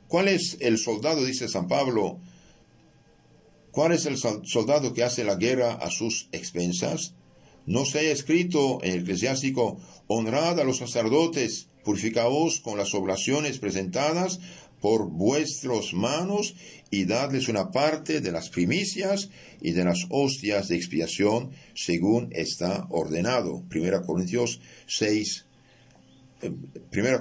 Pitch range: 100-155 Hz